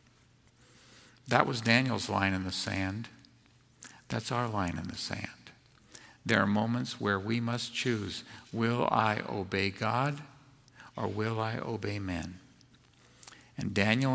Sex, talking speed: male, 130 wpm